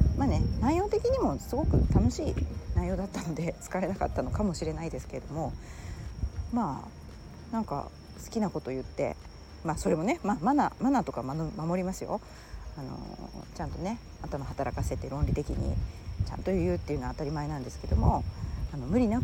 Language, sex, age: Japanese, female, 40-59